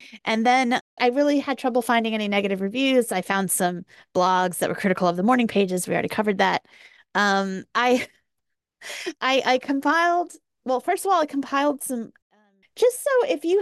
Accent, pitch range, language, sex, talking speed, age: American, 185-255 Hz, English, female, 180 wpm, 30-49